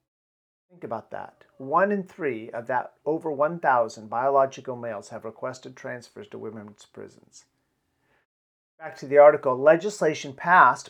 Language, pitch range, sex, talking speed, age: English, 130-170 Hz, male, 130 wpm, 40-59